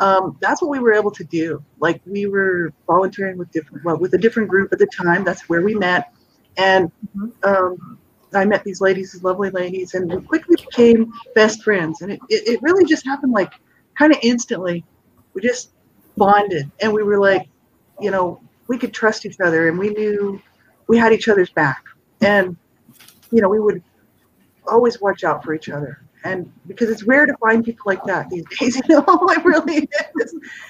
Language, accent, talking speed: English, American, 195 wpm